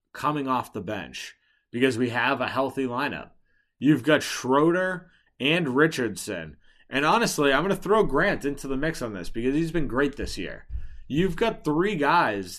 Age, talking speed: 30-49, 175 wpm